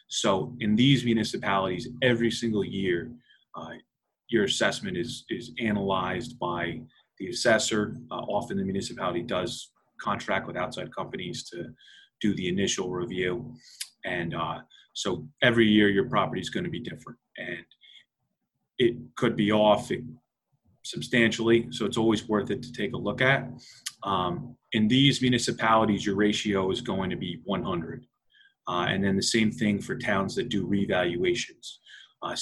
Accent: American